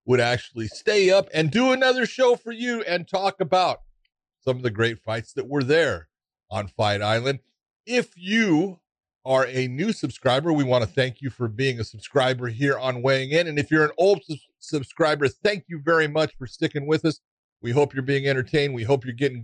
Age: 50-69